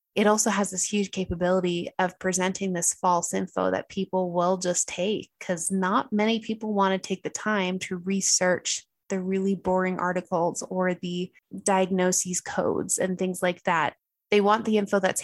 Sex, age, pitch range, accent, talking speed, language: female, 20-39, 180-210 Hz, American, 175 wpm, English